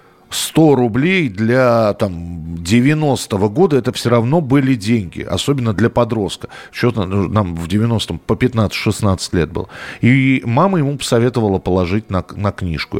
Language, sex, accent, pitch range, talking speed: Russian, male, native, 95-125 Hz, 145 wpm